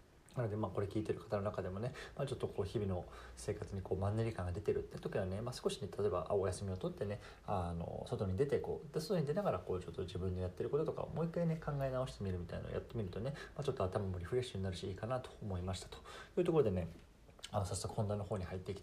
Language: Japanese